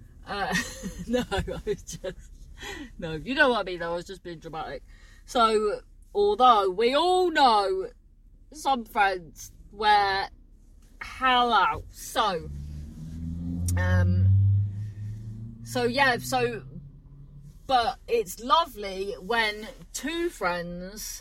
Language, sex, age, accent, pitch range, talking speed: English, female, 30-49, British, 155-260 Hz, 105 wpm